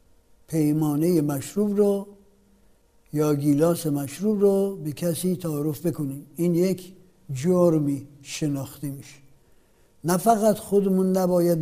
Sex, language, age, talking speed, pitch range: male, Persian, 60-79, 105 wpm, 160-210 Hz